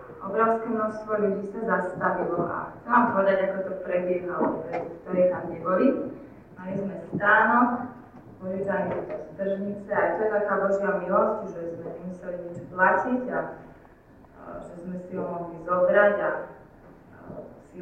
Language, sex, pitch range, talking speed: Slovak, female, 175-200 Hz, 140 wpm